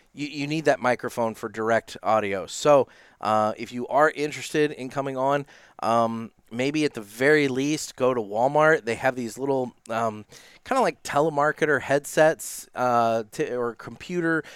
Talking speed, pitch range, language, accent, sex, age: 155 wpm, 105-135 Hz, English, American, male, 20-39